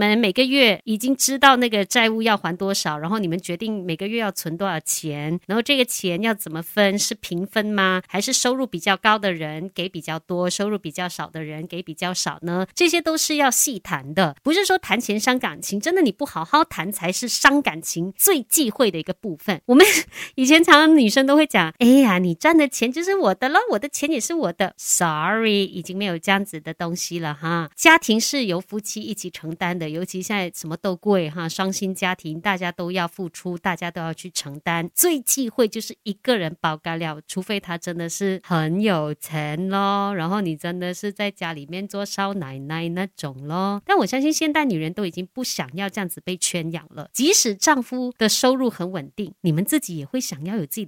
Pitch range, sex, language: 170-250 Hz, female, Chinese